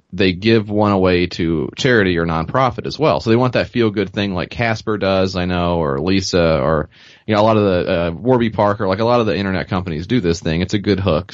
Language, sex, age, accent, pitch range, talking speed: English, male, 30-49, American, 90-110 Hz, 250 wpm